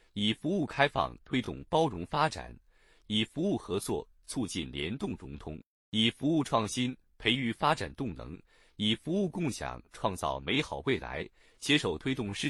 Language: Chinese